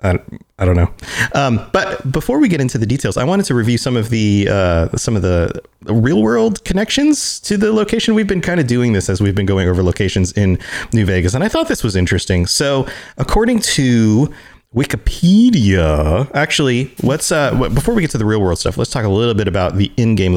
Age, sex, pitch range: 30-49, male, 100-165 Hz